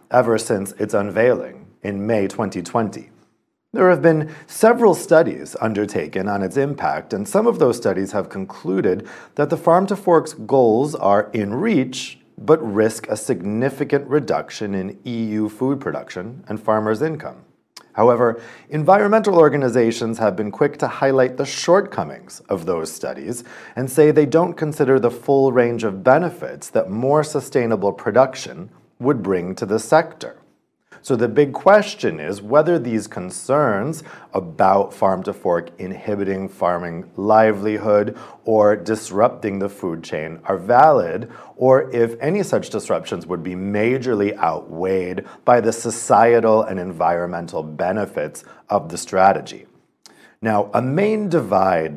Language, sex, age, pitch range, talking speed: English, male, 40-59, 100-145 Hz, 135 wpm